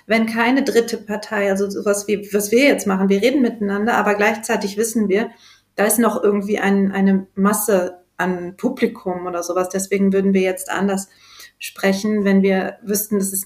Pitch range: 215-260 Hz